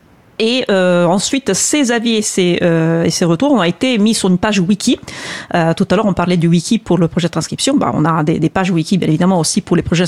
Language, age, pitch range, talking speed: French, 40-59, 170-215 Hz, 250 wpm